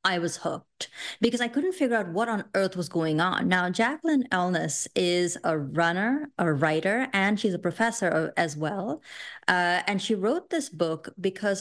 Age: 30-49